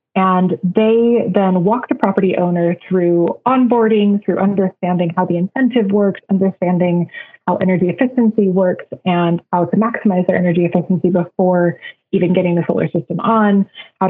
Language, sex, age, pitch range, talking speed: English, female, 20-39, 175-200 Hz, 150 wpm